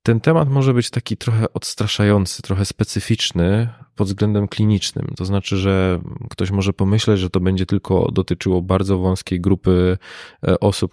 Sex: male